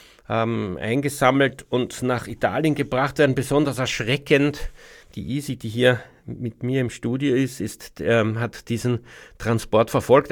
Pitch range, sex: 115-150 Hz, male